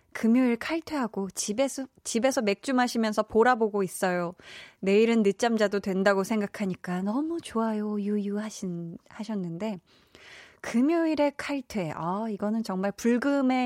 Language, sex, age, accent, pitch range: Korean, female, 20-39, native, 195-260 Hz